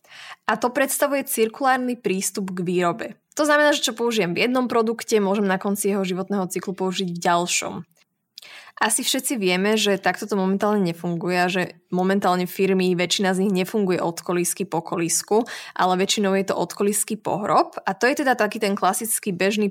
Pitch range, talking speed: 185-220 Hz, 175 wpm